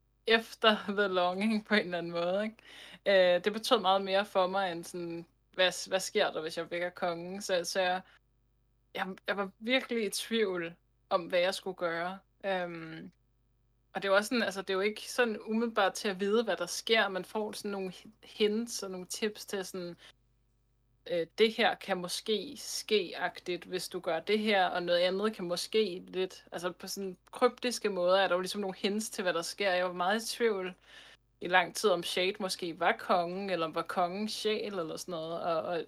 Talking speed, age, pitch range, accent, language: 200 wpm, 20-39, 170-205 Hz, native, Danish